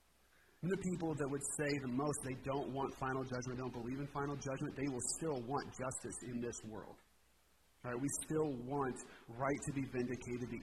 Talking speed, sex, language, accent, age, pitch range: 205 wpm, male, English, American, 30-49, 125-150 Hz